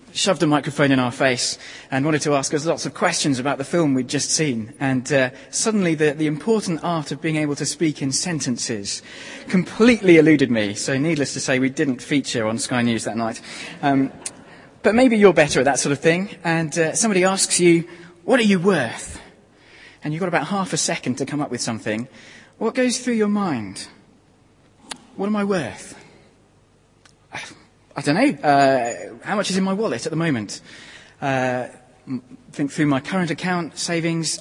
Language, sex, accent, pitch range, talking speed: English, male, British, 135-180 Hz, 190 wpm